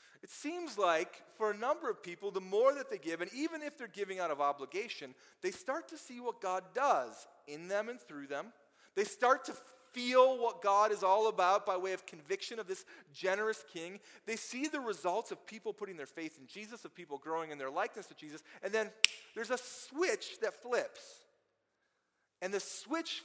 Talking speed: 205 wpm